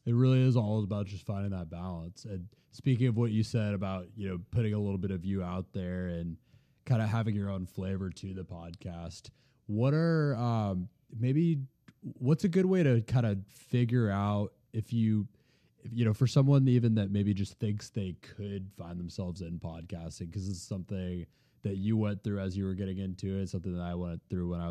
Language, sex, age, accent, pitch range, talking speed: English, male, 20-39, American, 90-115 Hz, 210 wpm